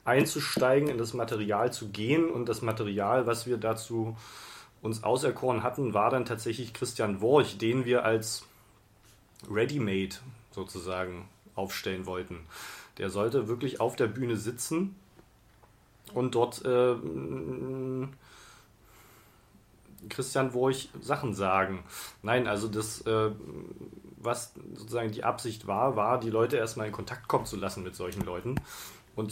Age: 30-49